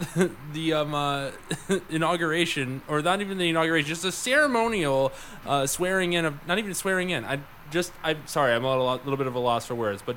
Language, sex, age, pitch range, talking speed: English, male, 20-39, 120-160 Hz, 200 wpm